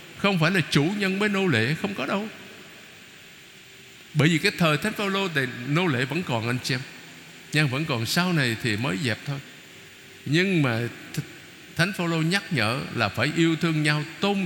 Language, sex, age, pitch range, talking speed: Vietnamese, male, 60-79, 135-180 Hz, 185 wpm